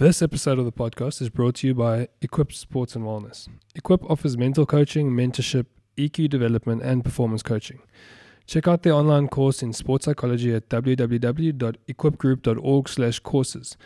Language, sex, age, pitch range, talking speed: English, male, 20-39, 120-140 Hz, 145 wpm